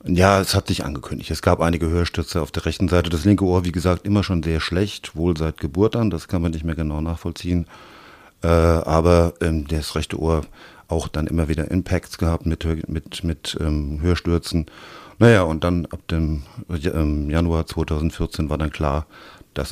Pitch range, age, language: 75-90 Hz, 50-69, German